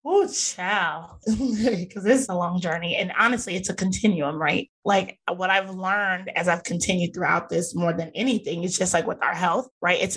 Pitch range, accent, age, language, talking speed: 175-215 Hz, American, 20-39, English, 200 wpm